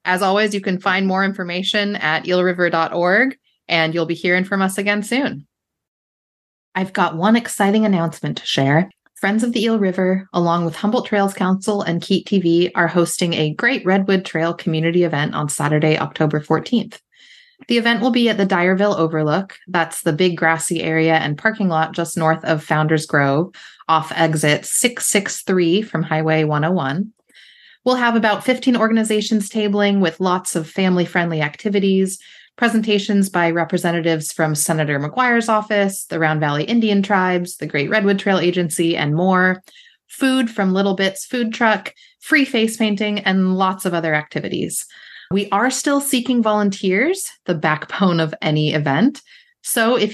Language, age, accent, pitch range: English, 20-39, American, 165-220 Hz